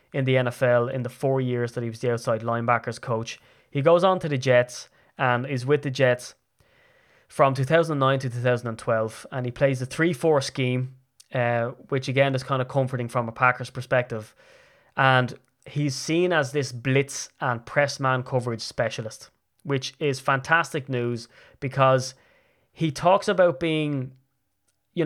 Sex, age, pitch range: male, 20-39, 120-145 Hz